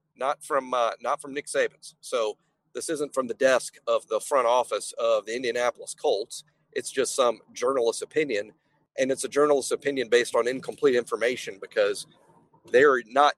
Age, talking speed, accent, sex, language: 40-59, 170 wpm, American, male, English